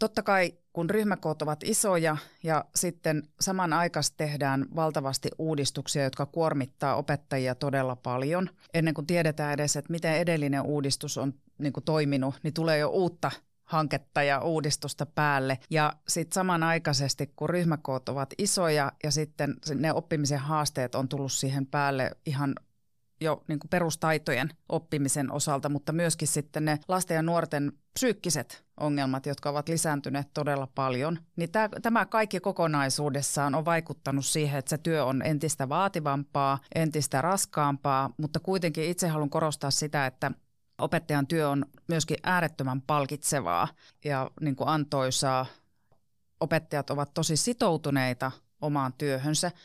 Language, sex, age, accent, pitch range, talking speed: Finnish, female, 30-49, native, 140-165 Hz, 130 wpm